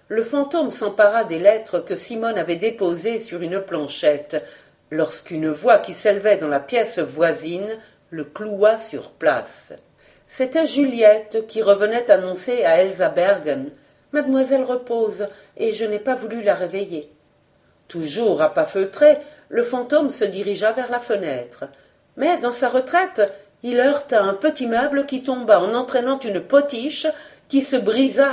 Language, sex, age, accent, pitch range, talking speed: French, female, 50-69, French, 185-265 Hz, 150 wpm